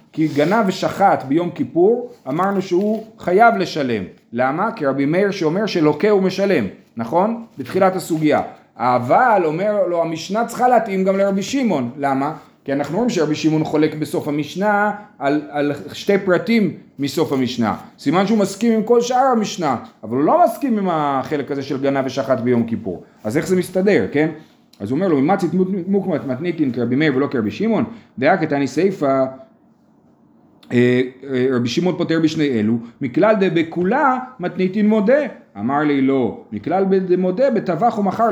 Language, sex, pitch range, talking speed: Hebrew, male, 145-205 Hz, 155 wpm